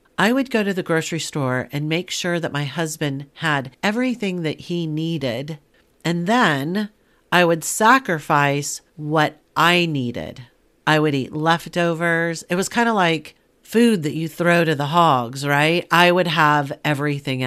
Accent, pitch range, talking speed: American, 140-170 Hz, 160 wpm